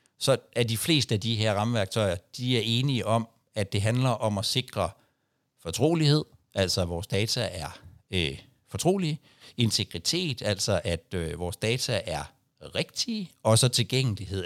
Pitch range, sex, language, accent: 95-130 Hz, male, Danish, native